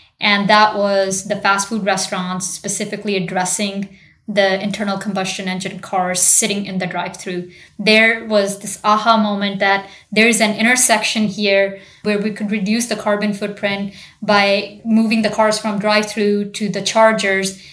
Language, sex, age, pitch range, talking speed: English, female, 20-39, 190-210 Hz, 160 wpm